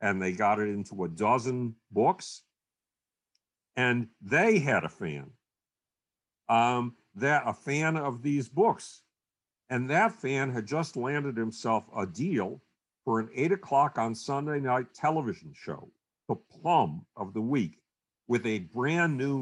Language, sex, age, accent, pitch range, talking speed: English, male, 50-69, American, 110-140 Hz, 145 wpm